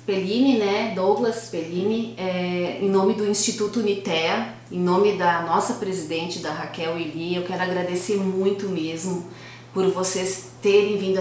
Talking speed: 145 wpm